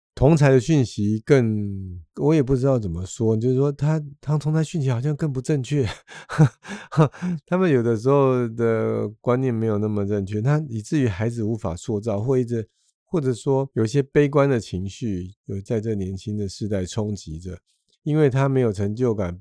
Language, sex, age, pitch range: Chinese, male, 50-69, 100-135 Hz